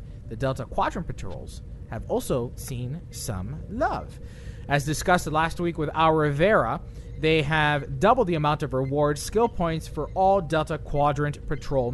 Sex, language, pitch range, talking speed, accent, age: male, English, 120-160 Hz, 150 wpm, American, 20-39